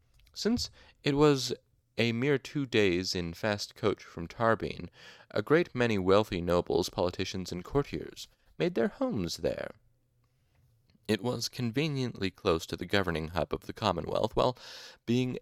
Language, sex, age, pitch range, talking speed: English, male, 30-49, 95-120 Hz, 145 wpm